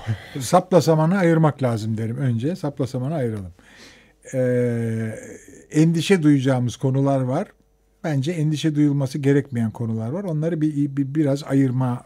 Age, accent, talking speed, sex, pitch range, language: 50-69, native, 120 wpm, male, 130-170 Hz, Turkish